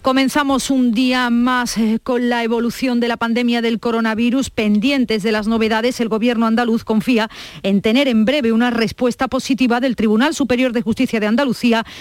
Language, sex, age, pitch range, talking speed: Spanish, female, 40-59, 205-250 Hz, 170 wpm